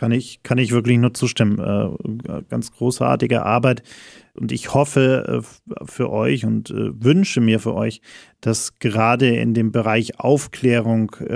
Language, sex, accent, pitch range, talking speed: German, male, German, 110-125 Hz, 135 wpm